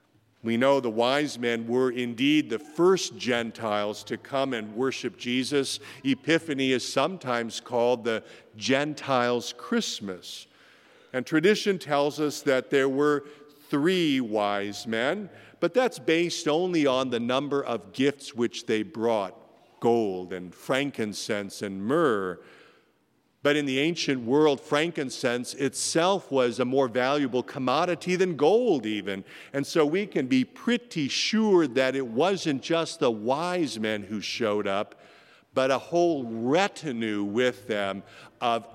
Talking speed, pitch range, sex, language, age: 135 wpm, 115-160 Hz, male, English, 50-69